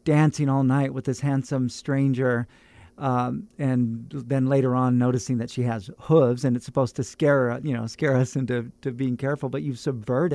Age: 50-69